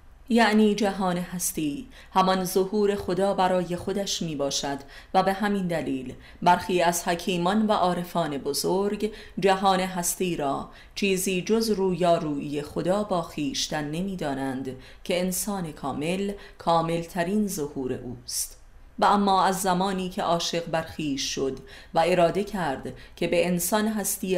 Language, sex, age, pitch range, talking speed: Persian, female, 30-49, 150-195 Hz, 135 wpm